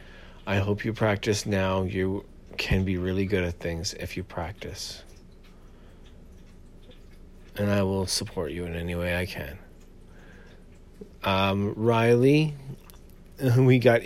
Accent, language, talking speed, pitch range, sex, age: American, English, 125 wpm, 95-115 Hz, male, 40-59